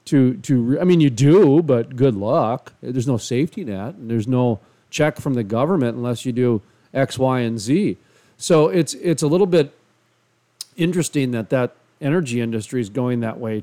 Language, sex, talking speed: English, male, 185 wpm